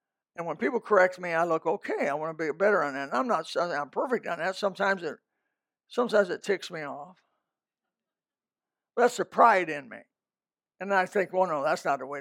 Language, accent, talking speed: English, American, 210 wpm